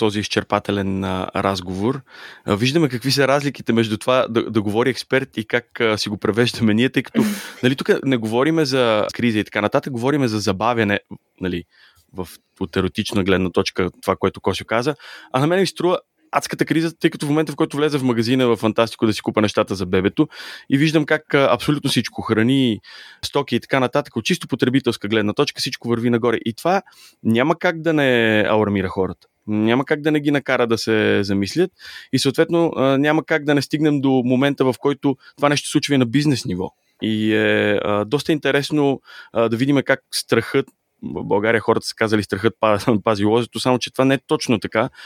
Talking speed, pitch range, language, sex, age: 195 wpm, 110-140 Hz, Bulgarian, male, 20-39